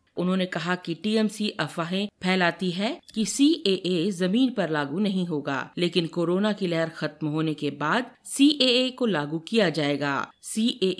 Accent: native